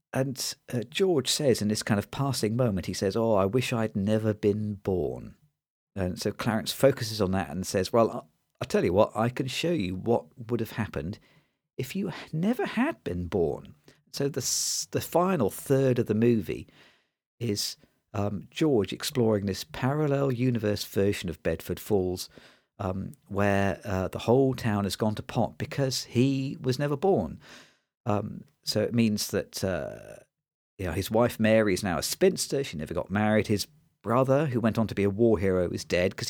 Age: 50-69